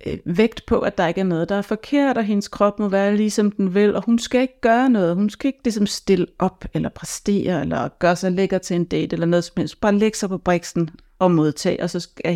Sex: female